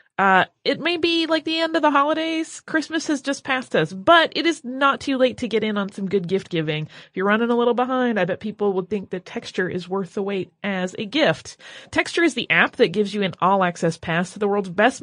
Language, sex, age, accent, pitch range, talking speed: English, female, 30-49, American, 180-245 Hz, 255 wpm